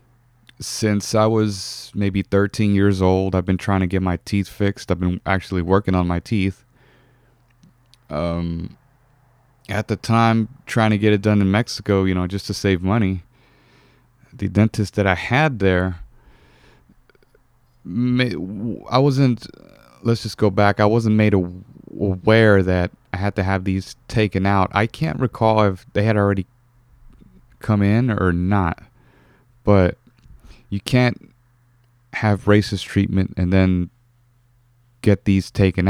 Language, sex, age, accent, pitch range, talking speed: English, male, 30-49, American, 95-120 Hz, 140 wpm